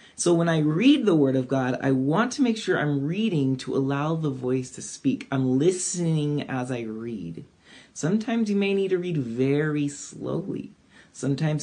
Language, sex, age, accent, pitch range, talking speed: English, male, 30-49, American, 140-185 Hz, 180 wpm